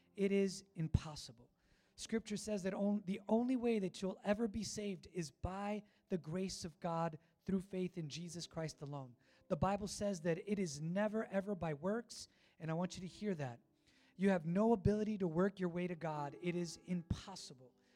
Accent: American